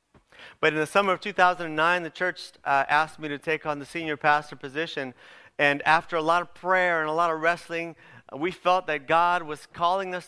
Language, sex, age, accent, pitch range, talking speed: English, male, 30-49, American, 145-175 Hz, 210 wpm